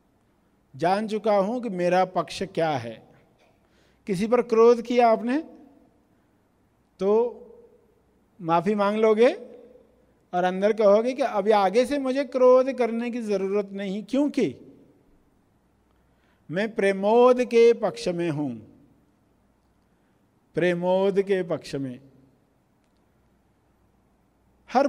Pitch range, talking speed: 195-255 Hz, 105 wpm